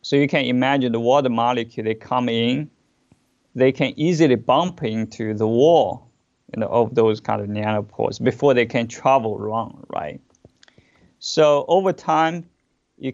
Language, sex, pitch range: English, male, 115-140 Hz